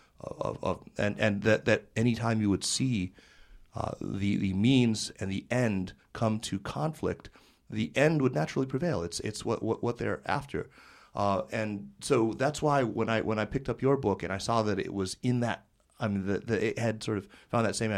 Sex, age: male, 30-49